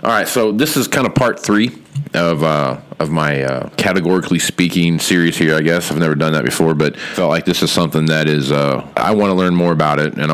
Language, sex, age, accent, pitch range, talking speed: English, male, 40-59, American, 75-90 Hz, 245 wpm